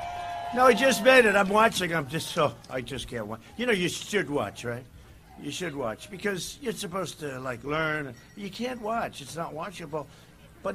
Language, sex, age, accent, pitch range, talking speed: English, male, 60-79, American, 145-220 Hz, 200 wpm